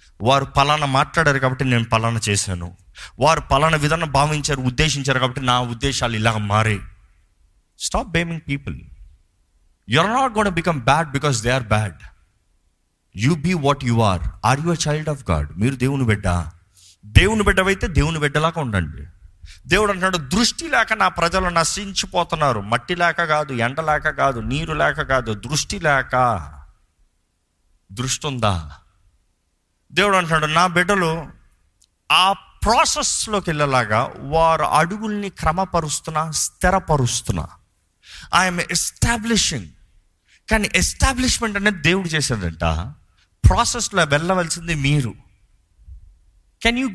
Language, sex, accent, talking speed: Telugu, male, native, 120 wpm